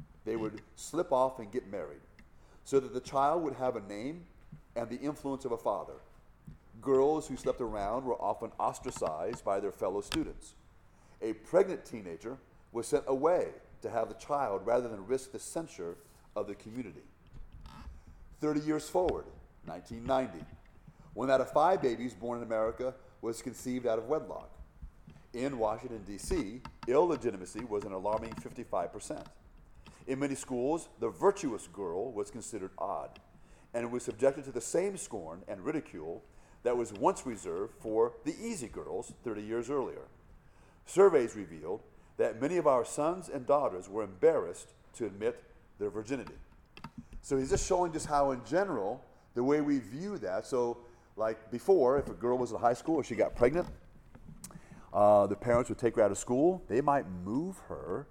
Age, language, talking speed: 40-59, English, 165 wpm